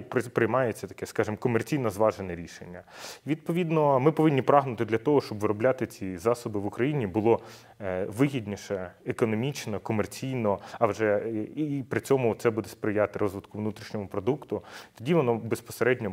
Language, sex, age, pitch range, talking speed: Ukrainian, male, 30-49, 100-120 Hz, 135 wpm